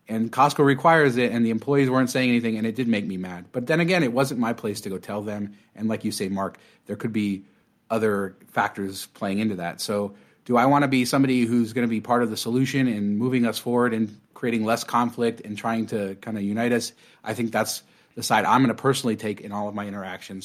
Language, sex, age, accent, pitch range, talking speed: English, male, 30-49, American, 105-125 Hz, 250 wpm